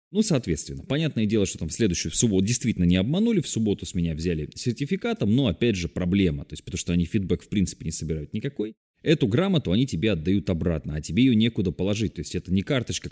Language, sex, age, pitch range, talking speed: Russian, male, 20-39, 80-120 Hz, 230 wpm